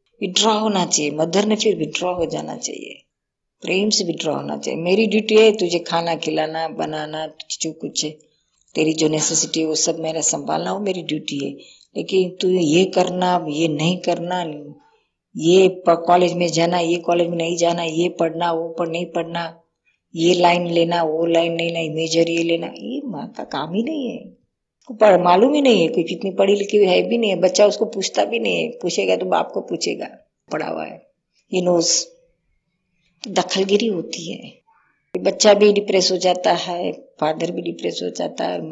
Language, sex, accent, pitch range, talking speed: Hindi, female, native, 165-205 Hz, 170 wpm